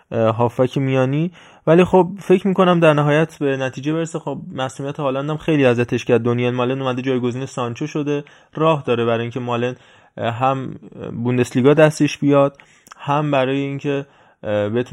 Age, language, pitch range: 20-39, Persian, 120-140 Hz